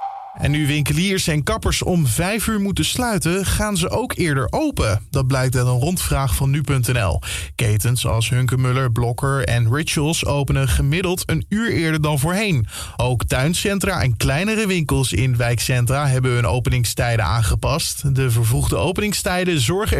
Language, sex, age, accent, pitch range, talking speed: English, male, 20-39, Dutch, 125-175 Hz, 150 wpm